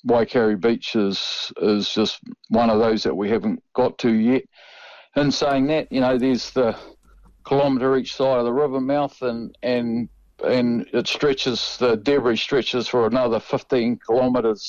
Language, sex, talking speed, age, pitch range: English, male, 165 wpm, 50-69, 110-130 Hz